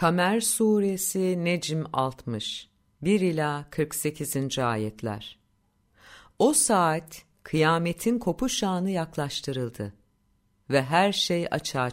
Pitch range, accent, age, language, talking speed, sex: 135-200 Hz, native, 50-69, Turkish, 75 wpm, female